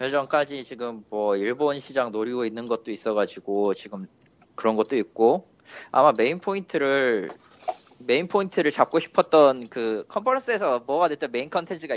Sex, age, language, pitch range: male, 20-39, Korean, 125-165 Hz